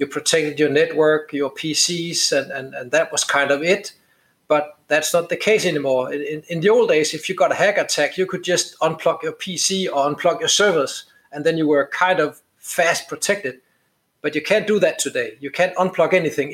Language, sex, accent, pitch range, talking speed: English, male, Danish, 145-180 Hz, 215 wpm